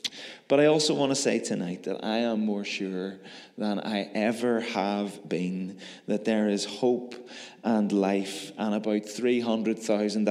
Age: 20-39